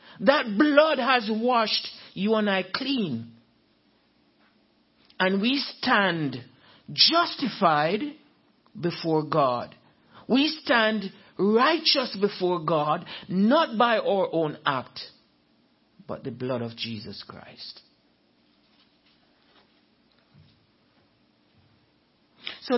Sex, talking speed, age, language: male, 80 wpm, 60-79, English